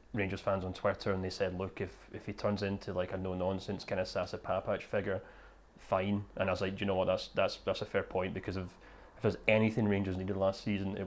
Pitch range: 100-110 Hz